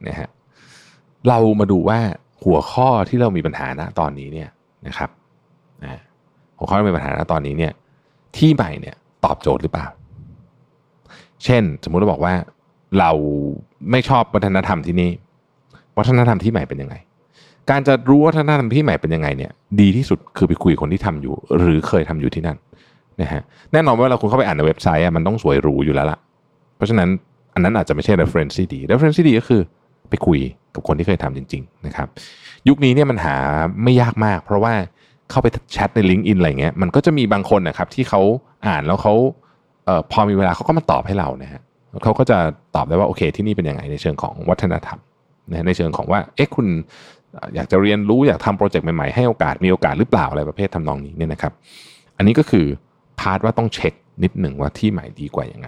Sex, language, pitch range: male, Thai, 80-130 Hz